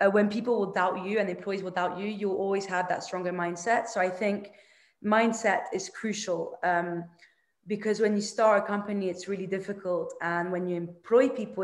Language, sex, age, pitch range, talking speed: English, female, 20-39, 185-215 Hz, 190 wpm